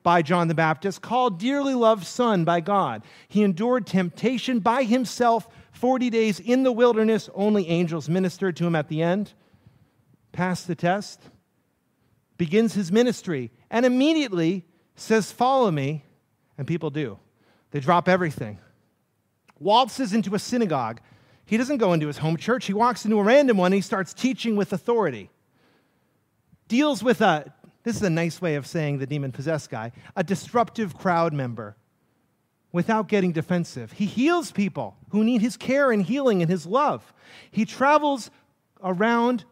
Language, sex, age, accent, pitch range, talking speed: English, male, 40-59, American, 155-230 Hz, 155 wpm